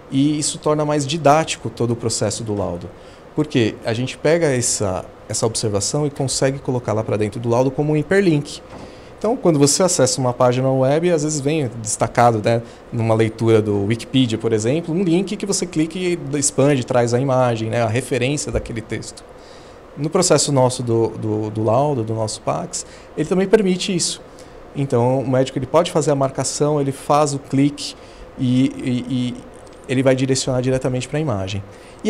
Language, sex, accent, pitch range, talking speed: Portuguese, male, Brazilian, 115-150 Hz, 185 wpm